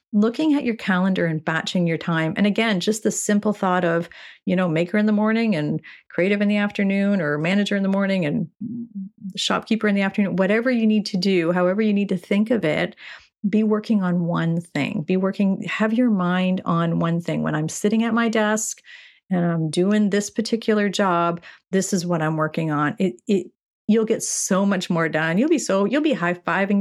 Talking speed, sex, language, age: 210 wpm, female, English, 40-59